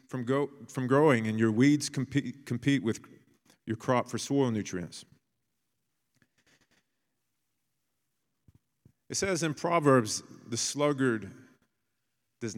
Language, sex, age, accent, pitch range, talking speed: English, male, 40-59, American, 110-130 Hz, 105 wpm